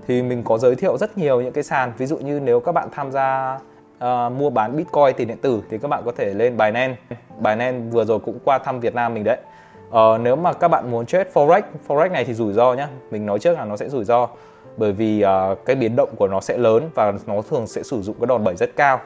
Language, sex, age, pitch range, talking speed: Vietnamese, male, 20-39, 110-150 Hz, 270 wpm